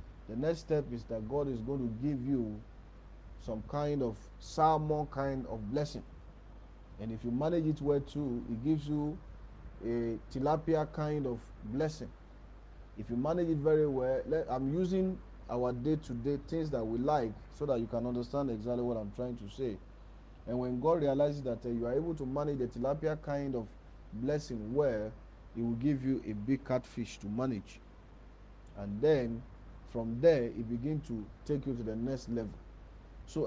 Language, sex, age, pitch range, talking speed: English, male, 40-59, 110-145 Hz, 175 wpm